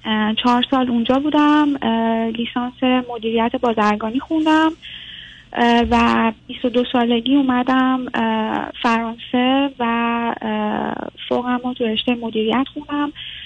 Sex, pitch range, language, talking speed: female, 225-260 Hz, Persian, 90 wpm